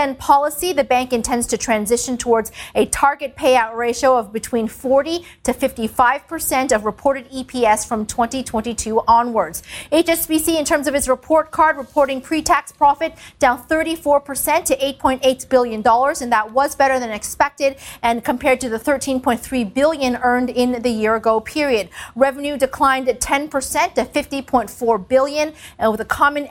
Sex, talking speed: female, 160 wpm